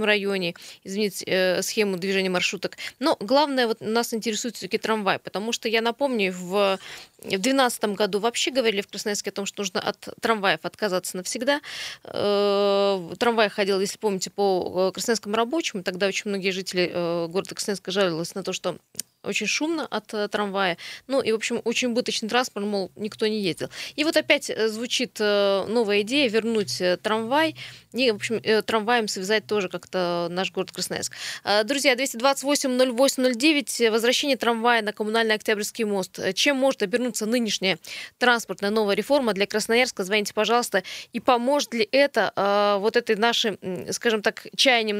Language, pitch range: Russian, 195-235 Hz